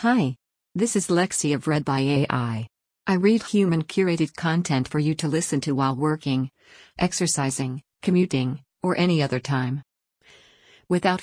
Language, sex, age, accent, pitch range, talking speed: English, female, 50-69, American, 140-170 Hz, 140 wpm